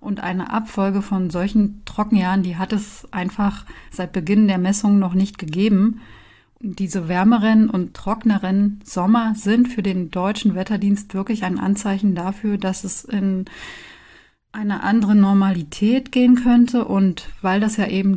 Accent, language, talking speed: German, German, 150 wpm